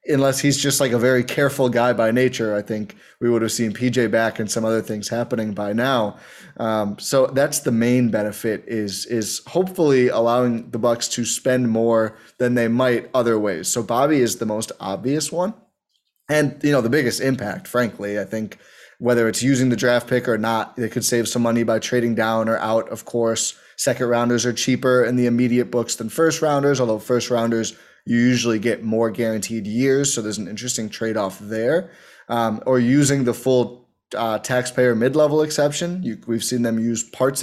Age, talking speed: 20-39, 195 wpm